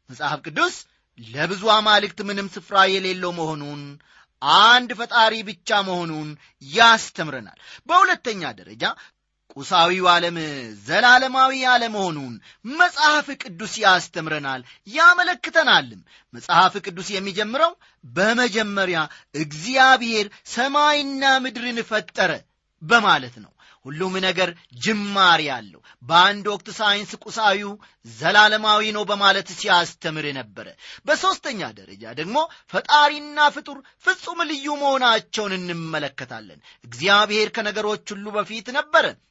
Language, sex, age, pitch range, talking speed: Amharic, male, 30-49, 165-245 Hz, 95 wpm